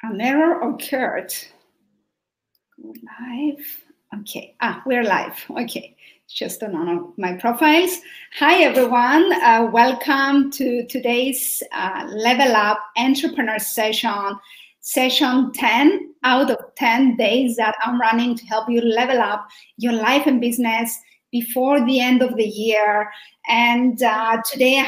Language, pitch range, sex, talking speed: Greek, 230-290 Hz, female, 125 wpm